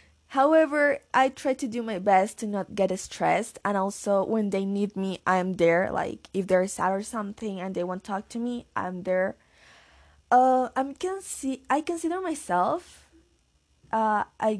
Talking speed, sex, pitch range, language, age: 160 wpm, female, 195-270 Hz, Spanish, 20-39